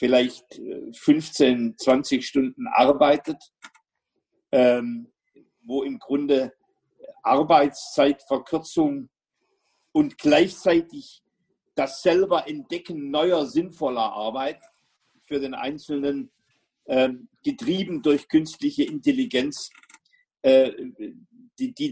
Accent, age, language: German, 50-69, German